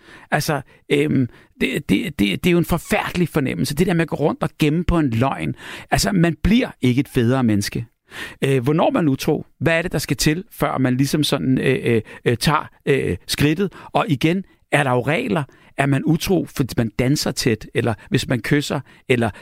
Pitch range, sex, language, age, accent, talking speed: 125-160 Hz, male, Danish, 60-79, native, 210 wpm